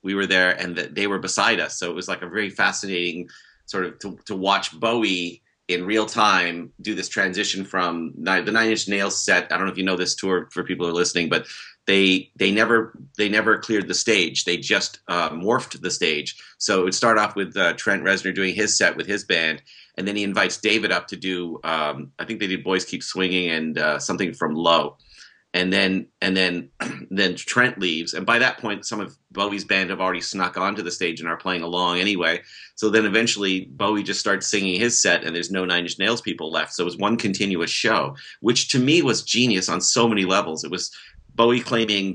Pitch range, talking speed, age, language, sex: 90-105 Hz, 230 wpm, 30-49, English, male